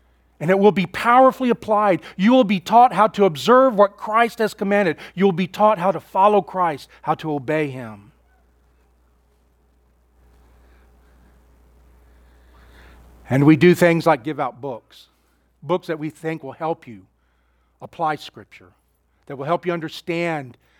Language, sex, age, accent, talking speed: English, male, 40-59, American, 145 wpm